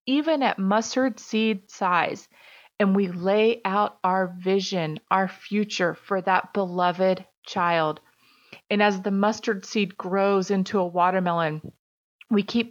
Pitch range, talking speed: 185-220 Hz, 130 wpm